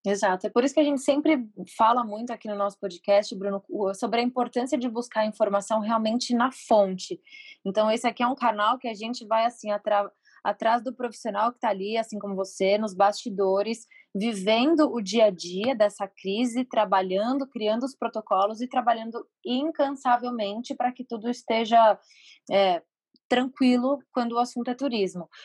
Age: 20-39